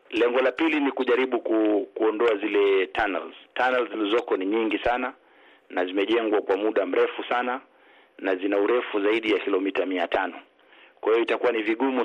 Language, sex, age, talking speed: Swahili, male, 40-59, 160 wpm